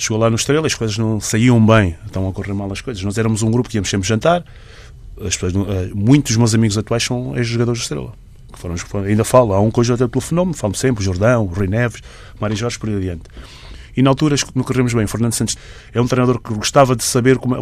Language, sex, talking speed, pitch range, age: Portuguese, male, 250 wpm, 110-135 Hz, 20-39